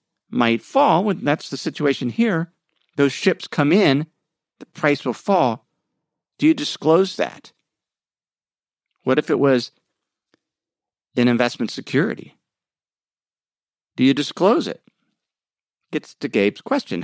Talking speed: 115 wpm